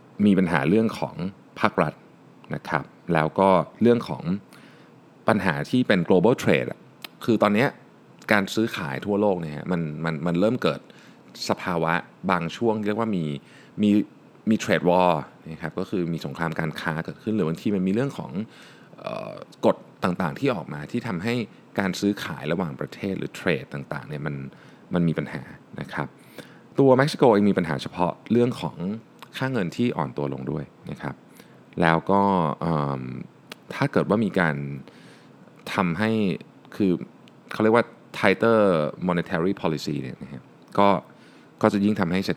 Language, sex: Thai, male